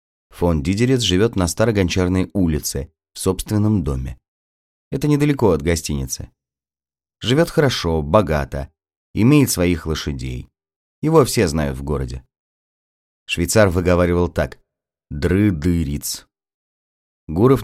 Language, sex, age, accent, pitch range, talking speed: Russian, male, 30-49, native, 75-95 Hz, 100 wpm